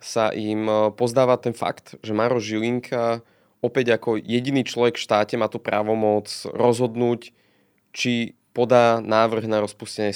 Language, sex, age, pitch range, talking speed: Slovak, male, 20-39, 105-120 Hz, 135 wpm